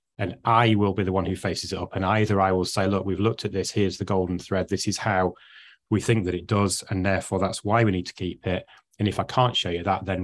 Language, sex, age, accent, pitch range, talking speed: English, male, 30-49, British, 95-110 Hz, 285 wpm